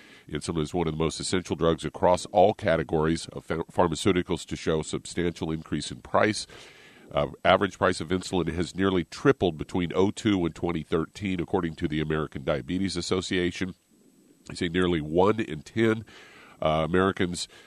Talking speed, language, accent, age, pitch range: 155 wpm, English, American, 50-69, 80-95 Hz